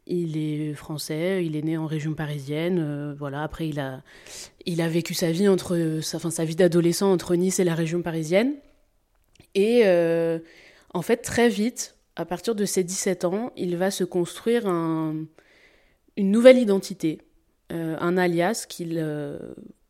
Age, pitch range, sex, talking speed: 20-39, 160-190 Hz, female, 170 wpm